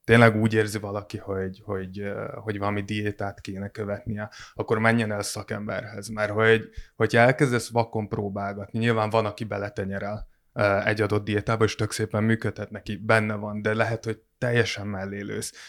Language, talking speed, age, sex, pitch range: Hungarian, 150 wpm, 20-39, male, 105-115 Hz